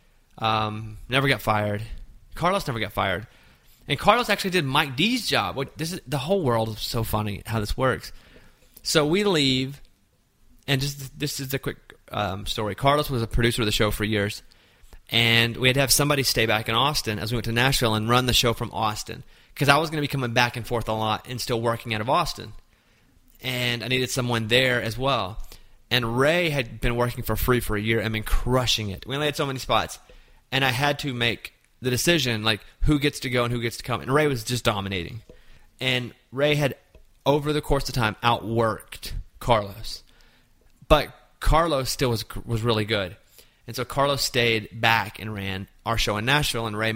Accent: American